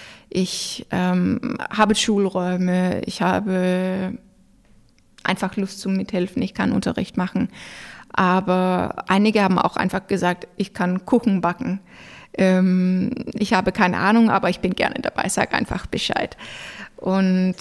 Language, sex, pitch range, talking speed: English, female, 185-210 Hz, 130 wpm